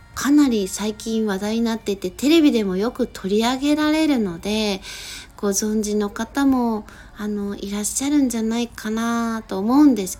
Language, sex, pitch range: Japanese, female, 190-225 Hz